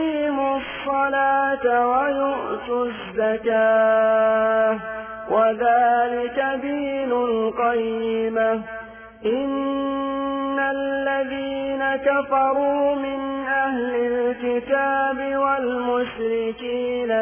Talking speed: 40 wpm